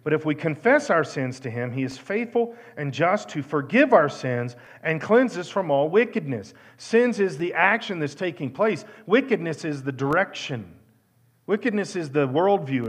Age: 40-59